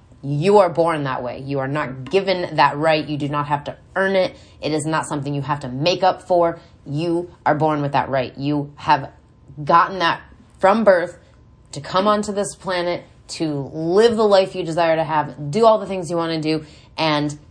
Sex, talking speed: female, 215 wpm